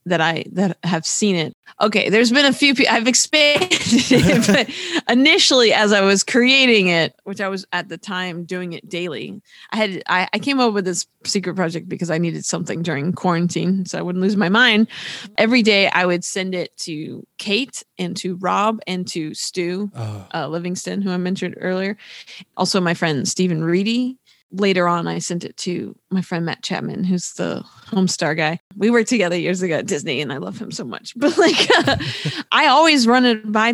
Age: 20-39